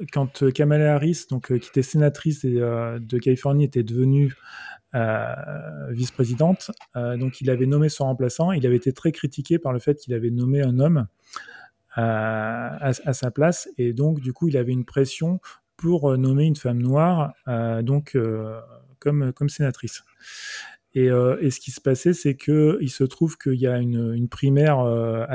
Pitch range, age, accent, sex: 120-145 Hz, 30-49, French, male